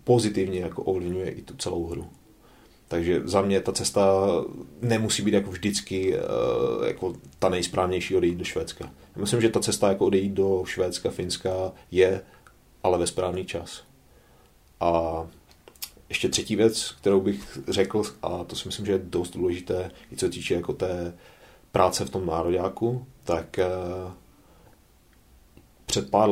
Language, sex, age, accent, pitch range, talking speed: Czech, male, 30-49, native, 90-100 Hz, 130 wpm